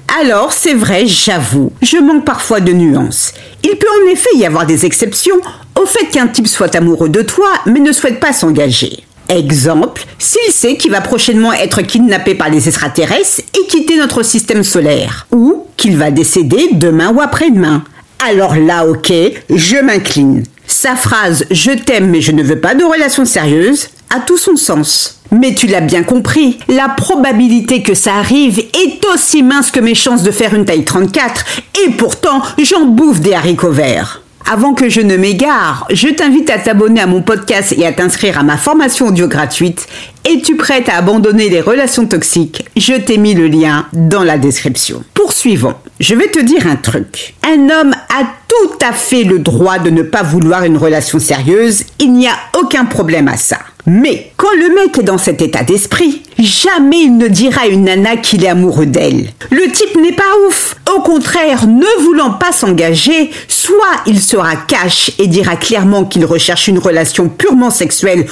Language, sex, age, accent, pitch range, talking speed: French, female, 50-69, French, 175-280 Hz, 185 wpm